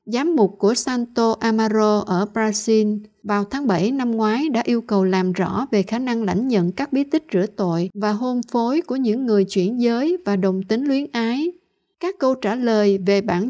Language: Vietnamese